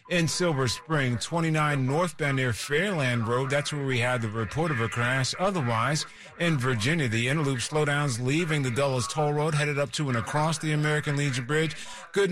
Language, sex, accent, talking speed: English, male, American, 185 wpm